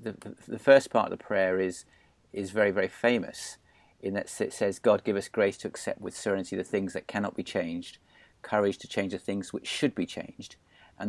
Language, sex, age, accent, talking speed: English, male, 40-59, British, 220 wpm